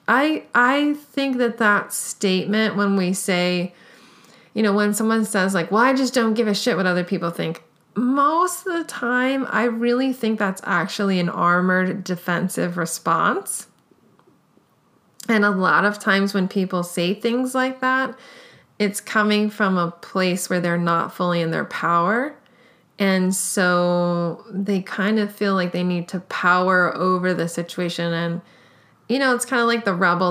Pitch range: 180-240 Hz